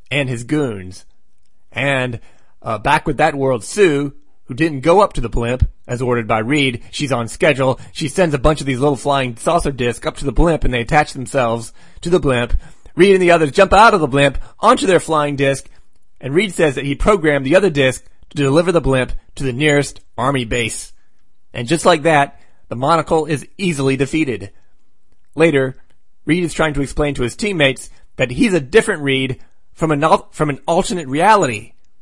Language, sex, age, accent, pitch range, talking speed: English, male, 30-49, American, 125-160 Hz, 195 wpm